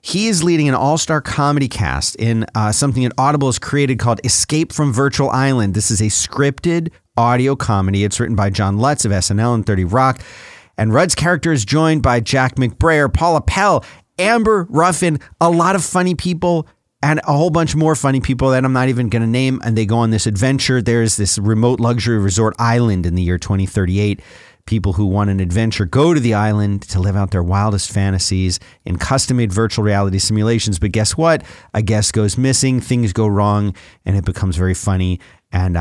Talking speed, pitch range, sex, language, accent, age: 200 wpm, 100-130 Hz, male, English, American, 40-59